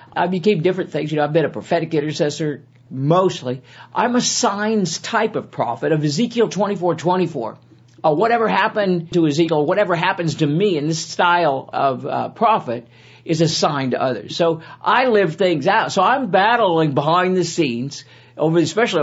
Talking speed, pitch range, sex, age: 170 wpm, 155-215 Hz, male, 50-69